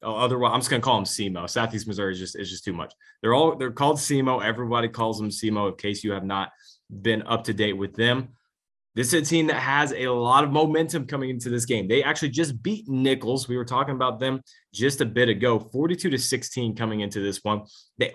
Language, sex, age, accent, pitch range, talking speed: English, male, 20-39, American, 105-130 Hz, 235 wpm